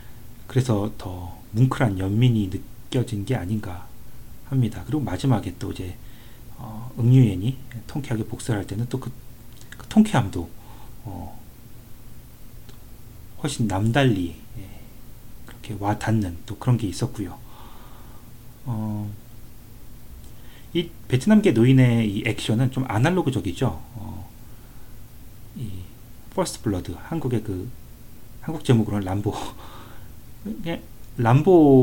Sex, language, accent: male, Korean, native